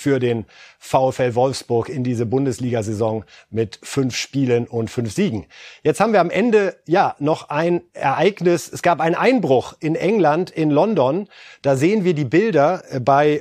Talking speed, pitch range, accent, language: 160 wpm, 130-170 Hz, German, German